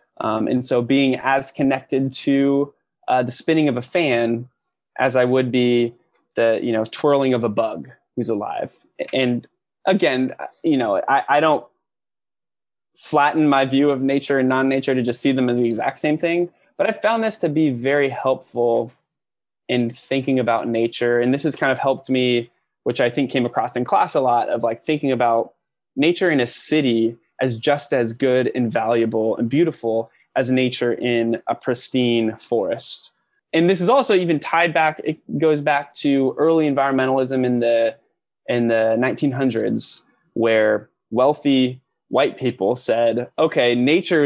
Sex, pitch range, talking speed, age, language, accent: male, 120-140 Hz, 170 wpm, 20-39, English, American